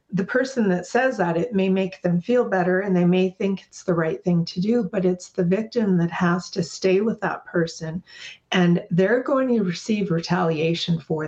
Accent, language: American, English